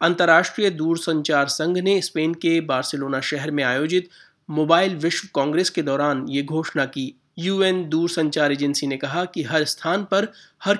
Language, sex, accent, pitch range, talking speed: Hindi, male, native, 140-170 Hz, 155 wpm